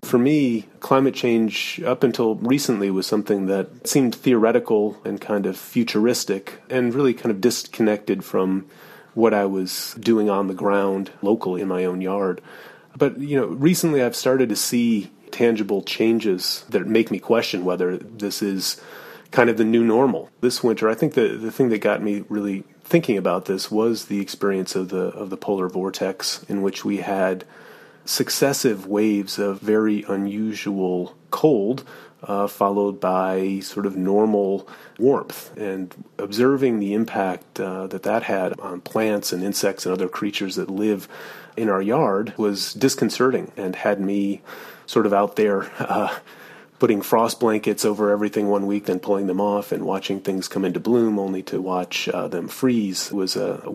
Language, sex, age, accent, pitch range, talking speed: English, male, 30-49, American, 95-115 Hz, 170 wpm